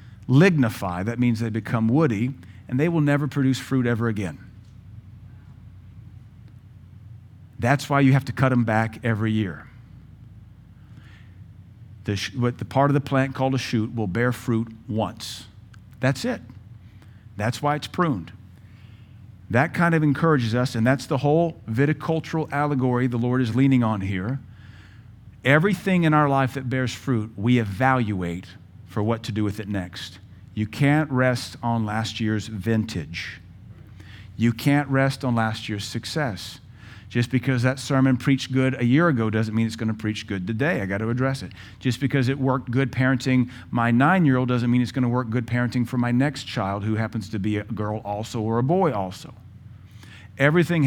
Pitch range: 105-130 Hz